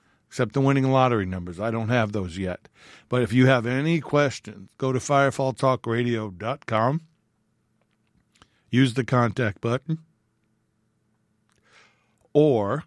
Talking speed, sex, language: 110 wpm, male, English